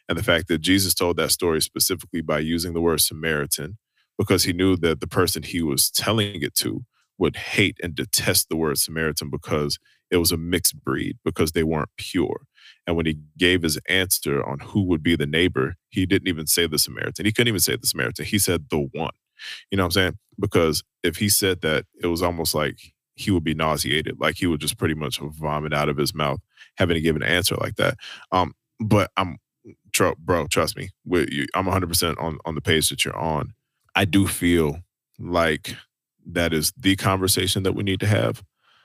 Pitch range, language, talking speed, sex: 80-95 Hz, English, 205 wpm, male